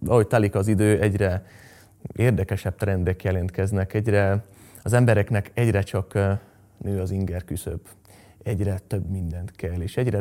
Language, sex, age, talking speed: Hungarian, male, 20-39, 130 wpm